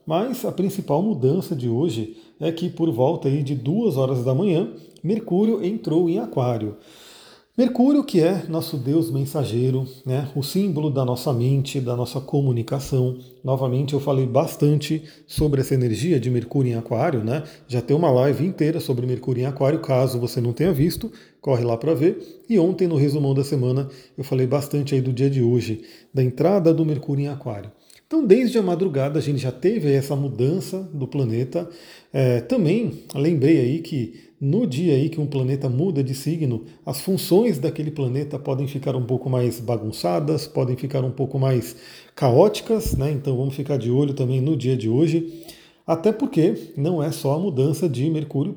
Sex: male